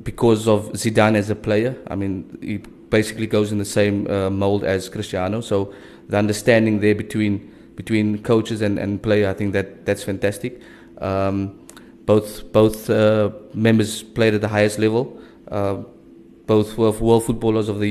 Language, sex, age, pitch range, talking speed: English, male, 20-39, 100-110 Hz, 170 wpm